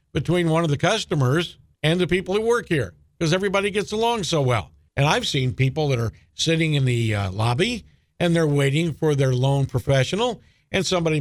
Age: 50-69